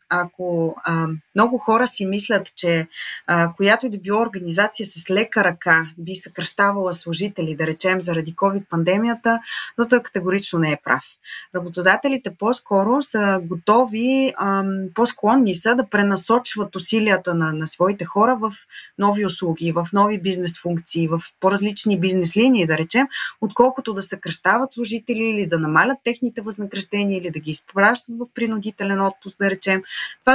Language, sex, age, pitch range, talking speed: Bulgarian, female, 20-39, 175-220 Hz, 145 wpm